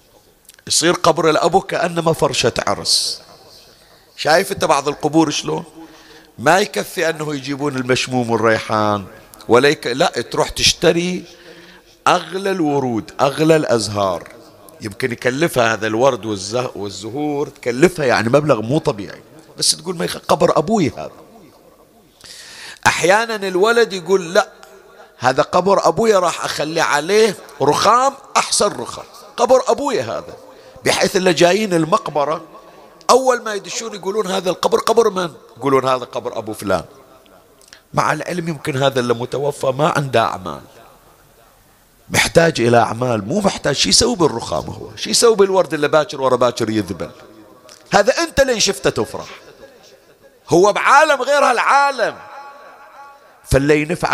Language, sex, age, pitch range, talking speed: Arabic, male, 50-69, 130-195 Hz, 125 wpm